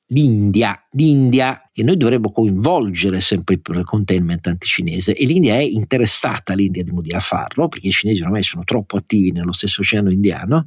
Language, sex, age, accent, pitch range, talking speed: Italian, male, 50-69, native, 100-125 Hz, 155 wpm